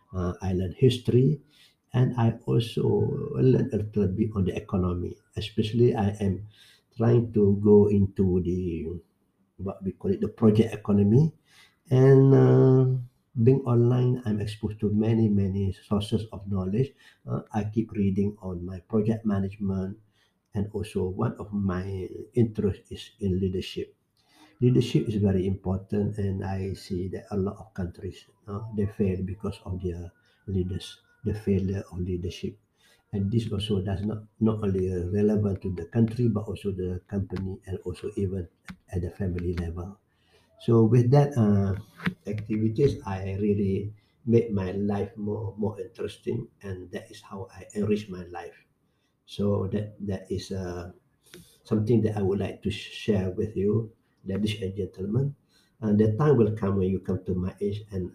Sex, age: male, 60-79